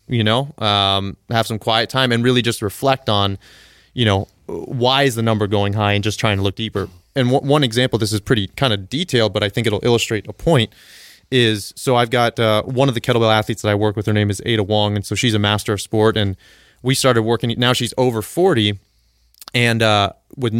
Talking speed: 235 wpm